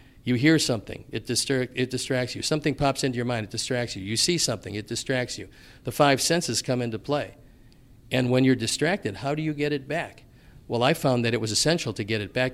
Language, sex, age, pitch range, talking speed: English, male, 50-69, 110-135 Hz, 225 wpm